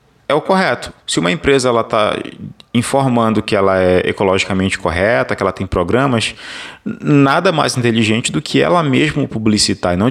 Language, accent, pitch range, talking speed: Portuguese, Brazilian, 90-120 Hz, 160 wpm